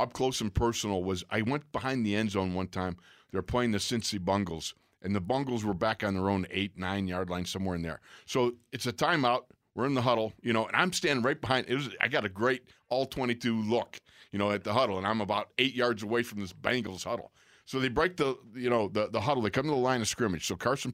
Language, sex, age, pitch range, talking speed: English, male, 50-69, 115-155 Hz, 260 wpm